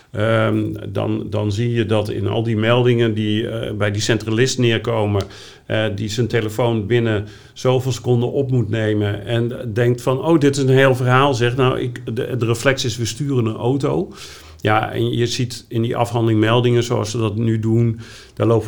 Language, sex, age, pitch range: Dutch, male, 50-69, 105-125 Hz